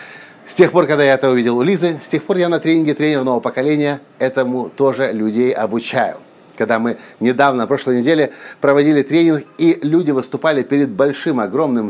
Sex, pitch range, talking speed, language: male, 125-160 Hz, 170 wpm, Russian